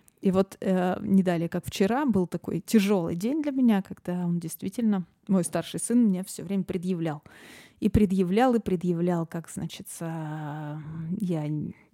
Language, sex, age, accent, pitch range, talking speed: Russian, female, 20-39, native, 175-225 Hz, 145 wpm